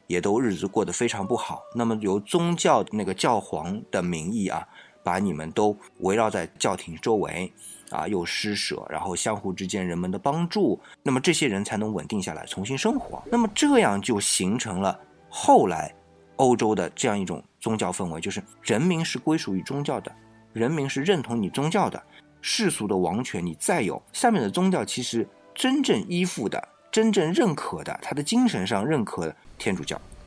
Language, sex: Chinese, male